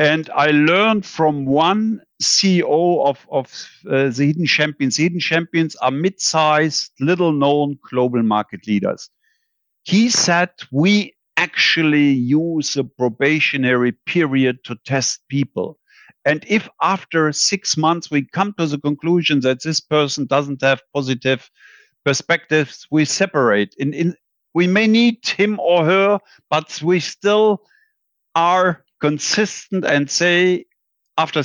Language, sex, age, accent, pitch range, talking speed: English, male, 50-69, German, 145-180 Hz, 120 wpm